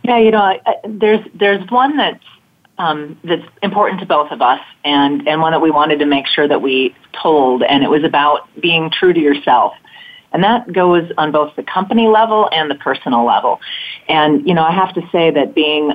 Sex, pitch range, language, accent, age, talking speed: female, 140-185 Hz, English, American, 30-49, 215 wpm